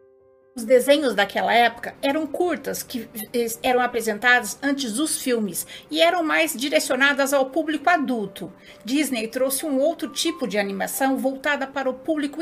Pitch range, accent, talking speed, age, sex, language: 225-305 Hz, Brazilian, 145 wpm, 50-69, female, Portuguese